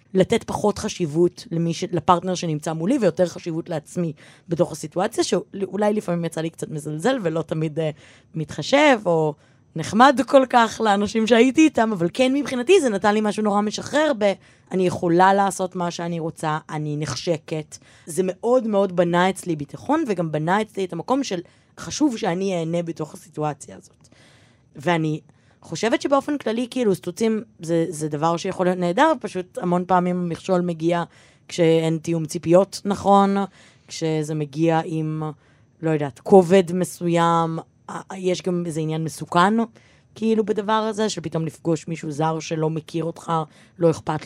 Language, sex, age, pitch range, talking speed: Hebrew, female, 20-39, 160-195 Hz, 145 wpm